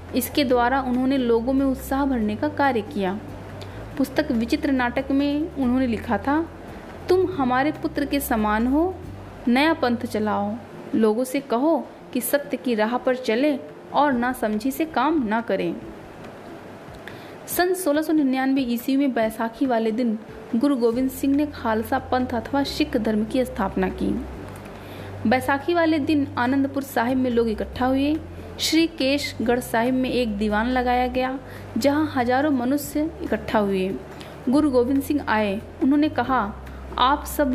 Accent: native